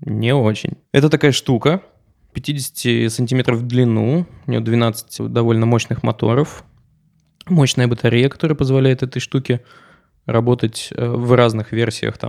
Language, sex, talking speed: Russian, male, 120 wpm